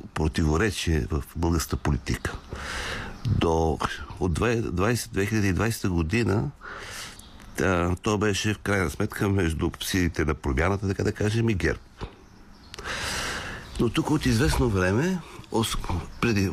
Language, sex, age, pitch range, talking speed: Bulgarian, male, 60-79, 80-105 Hz, 100 wpm